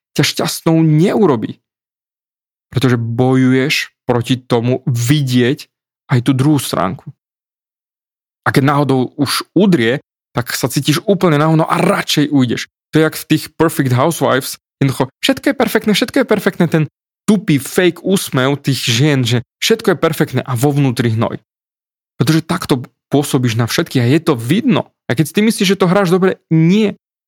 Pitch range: 130-175 Hz